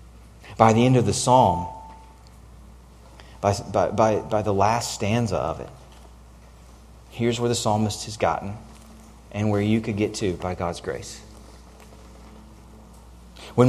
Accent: American